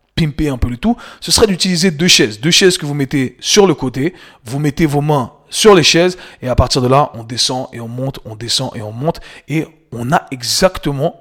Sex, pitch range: male, 125-155 Hz